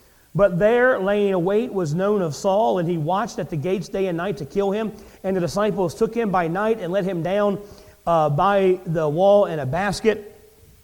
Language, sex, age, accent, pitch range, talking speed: English, male, 40-59, American, 175-225 Hz, 215 wpm